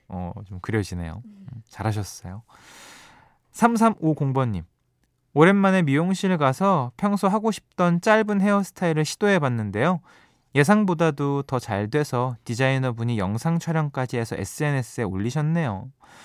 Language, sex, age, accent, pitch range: Korean, male, 20-39, native, 110-170 Hz